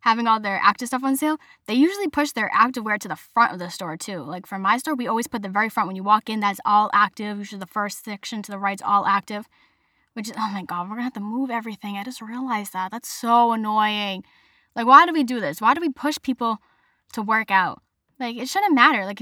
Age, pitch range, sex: 10-29, 200-270 Hz, female